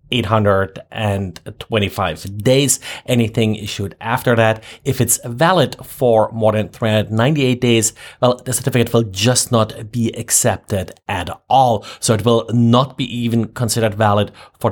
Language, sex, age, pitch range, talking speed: English, male, 30-49, 110-130 Hz, 135 wpm